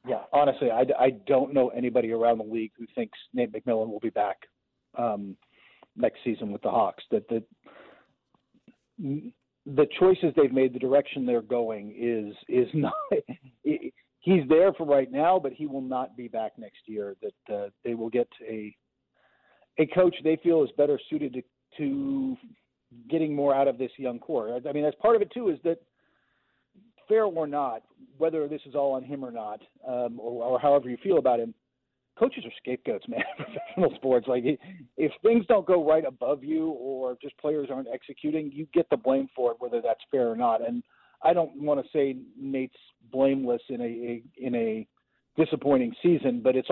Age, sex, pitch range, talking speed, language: 40-59, male, 120-165 Hz, 190 wpm, English